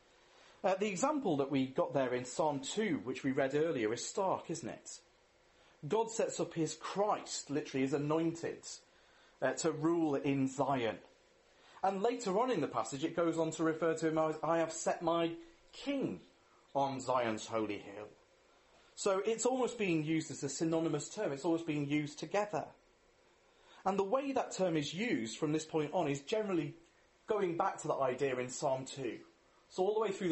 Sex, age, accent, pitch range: male, 40-59, British, 140-200 Hz